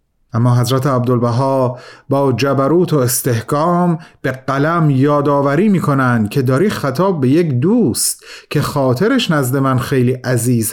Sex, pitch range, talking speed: male, 125-175 Hz, 130 wpm